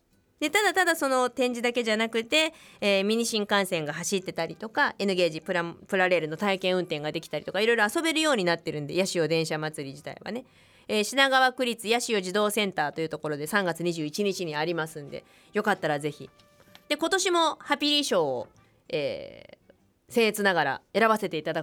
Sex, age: female, 20-39